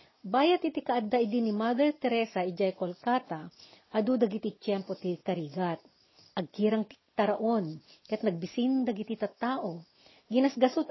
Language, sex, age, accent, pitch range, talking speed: Filipino, female, 40-59, native, 190-245 Hz, 120 wpm